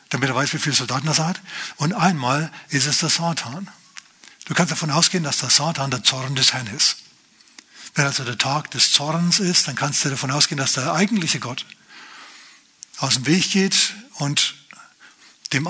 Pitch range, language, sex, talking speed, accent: 135-165 Hz, German, male, 185 wpm, German